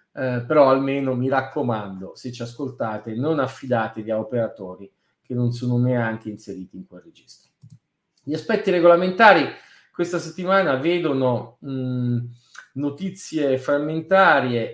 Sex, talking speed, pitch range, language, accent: male, 115 wpm, 125-165 Hz, Italian, native